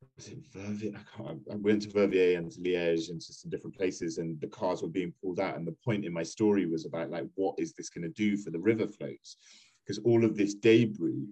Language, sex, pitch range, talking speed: English, male, 105-125 Hz, 250 wpm